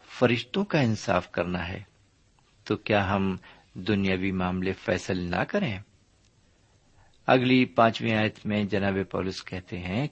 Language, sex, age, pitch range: Urdu, male, 50-69, 95-130 Hz